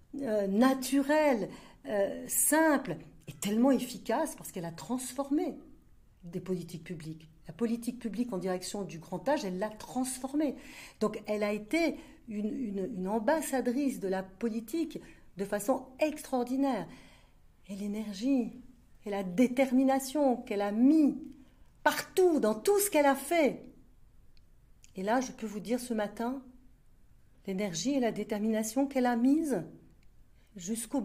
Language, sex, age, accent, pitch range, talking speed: French, female, 50-69, French, 190-260 Hz, 135 wpm